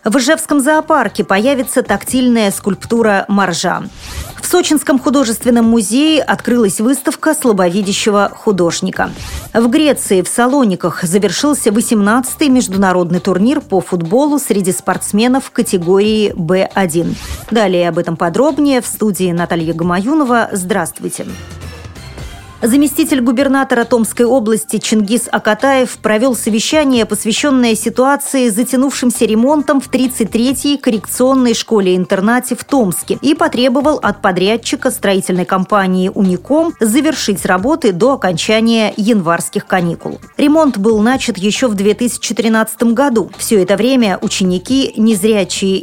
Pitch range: 195-260 Hz